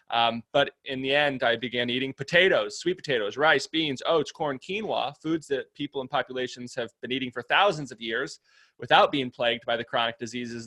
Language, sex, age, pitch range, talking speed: English, male, 20-39, 120-160 Hz, 195 wpm